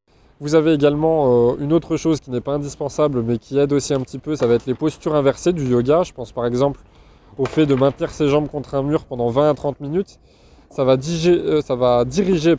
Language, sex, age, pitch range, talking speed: French, male, 20-39, 120-145 Hz, 230 wpm